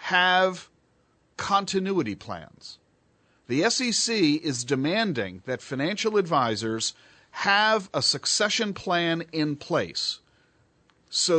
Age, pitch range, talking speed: 50-69, 145-220 Hz, 90 wpm